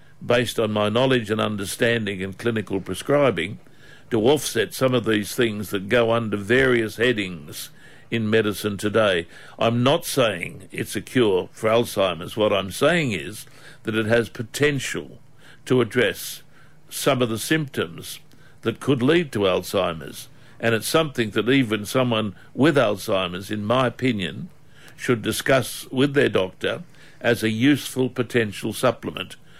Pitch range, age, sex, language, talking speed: 110-140 Hz, 60-79, male, English, 145 wpm